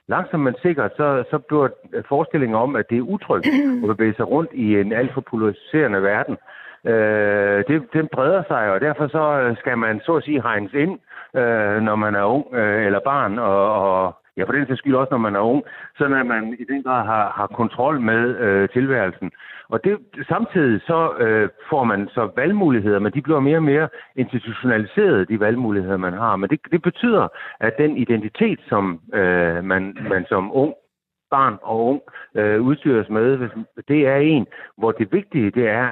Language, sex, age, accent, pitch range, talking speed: Danish, male, 60-79, native, 105-145 Hz, 195 wpm